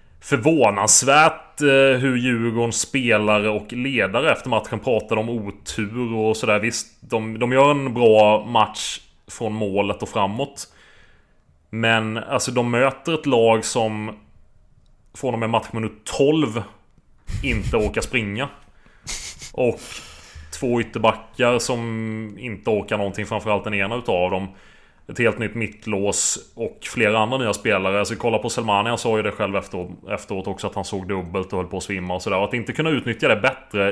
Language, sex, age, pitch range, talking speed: Swedish, male, 30-49, 100-120 Hz, 165 wpm